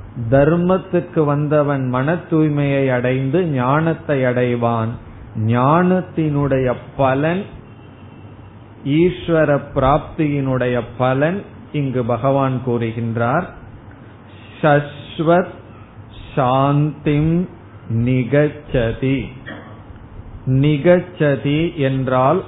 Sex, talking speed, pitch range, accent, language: male, 45 wpm, 115-145 Hz, native, Tamil